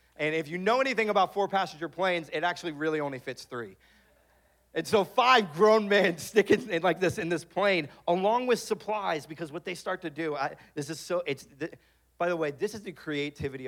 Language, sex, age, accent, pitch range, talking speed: English, male, 40-59, American, 130-185 Hz, 220 wpm